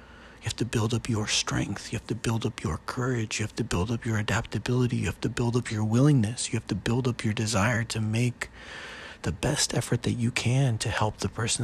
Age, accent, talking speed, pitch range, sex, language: 40-59, American, 240 wpm, 100-125 Hz, male, English